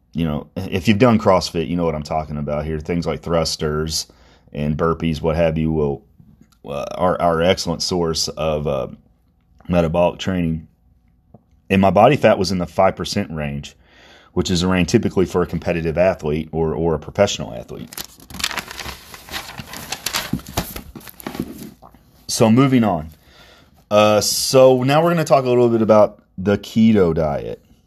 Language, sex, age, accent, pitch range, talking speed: English, male, 30-49, American, 80-100 Hz, 155 wpm